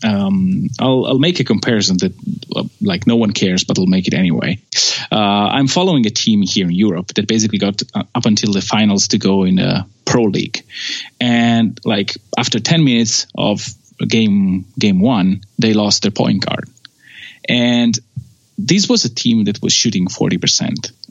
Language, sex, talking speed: English, male, 180 wpm